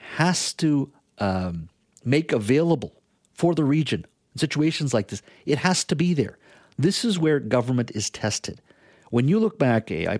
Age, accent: 50-69, American